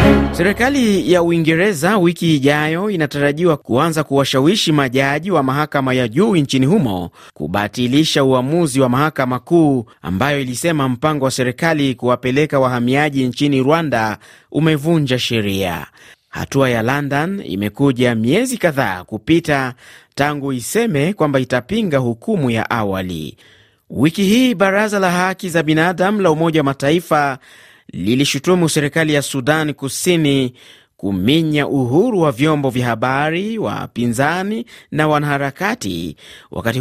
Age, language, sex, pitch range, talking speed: 30-49, Swahili, male, 125-160 Hz, 115 wpm